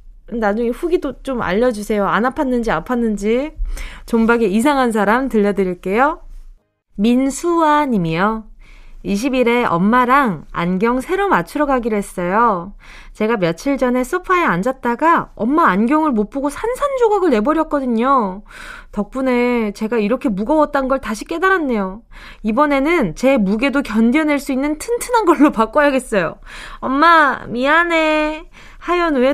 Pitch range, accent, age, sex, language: 215-315 Hz, native, 20-39, female, Korean